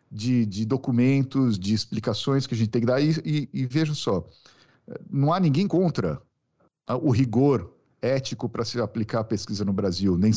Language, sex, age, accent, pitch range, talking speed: Portuguese, male, 50-69, Brazilian, 110-145 Hz, 180 wpm